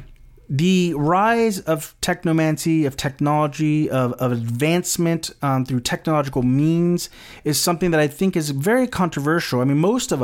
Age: 30-49